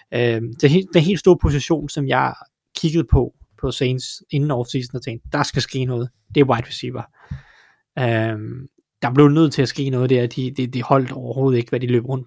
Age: 20-39